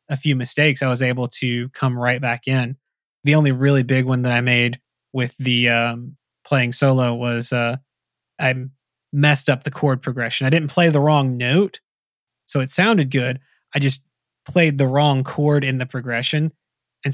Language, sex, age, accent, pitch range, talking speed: English, male, 20-39, American, 125-145 Hz, 180 wpm